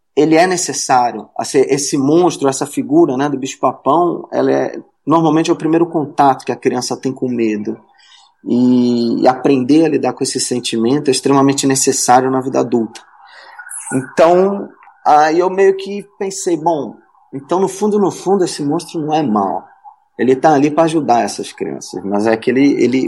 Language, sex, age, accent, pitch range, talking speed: Portuguese, male, 20-39, Brazilian, 130-170 Hz, 175 wpm